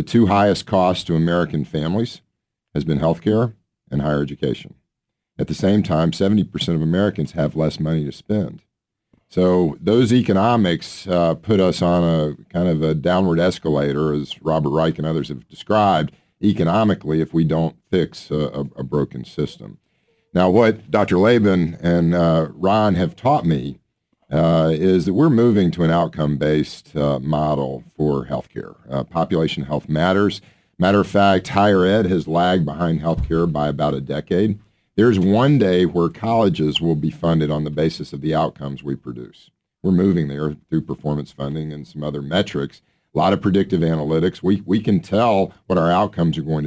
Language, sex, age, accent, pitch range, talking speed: English, male, 50-69, American, 75-95 Hz, 180 wpm